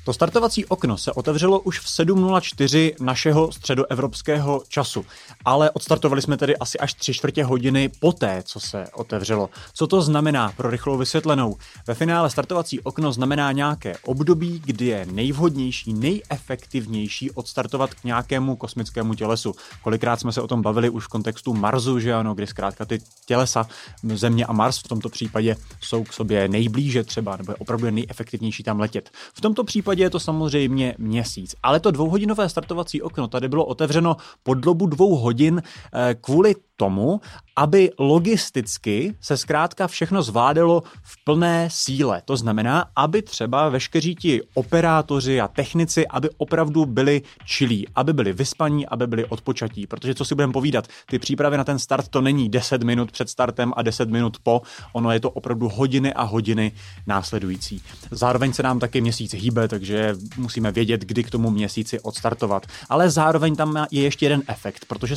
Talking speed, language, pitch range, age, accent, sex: 165 wpm, Czech, 115-155 Hz, 30-49, native, male